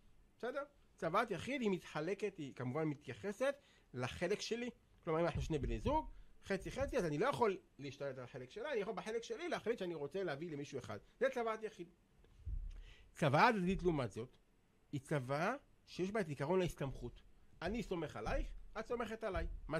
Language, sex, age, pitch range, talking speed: Hebrew, male, 40-59, 135-210 Hz, 175 wpm